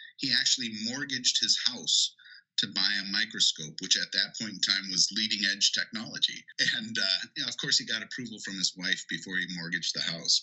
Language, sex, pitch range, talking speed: English, male, 85-110 Hz, 205 wpm